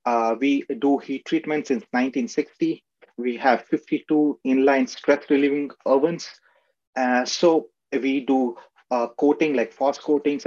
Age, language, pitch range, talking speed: 30-49, English, 125-160 Hz, 130 wpm